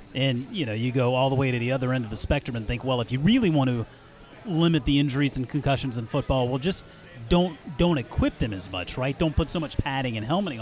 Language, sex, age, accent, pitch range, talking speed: English, male, 30-49, American, 115-155 Hz, 260 wpm